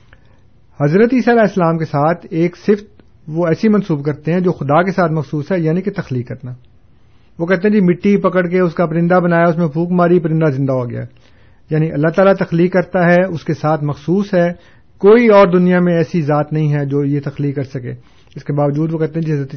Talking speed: 225 wpm